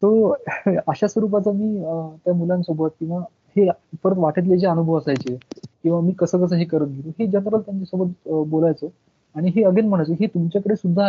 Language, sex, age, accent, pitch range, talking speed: Marathi, male, 20-39, native, 150-180 Hz, 160 wpm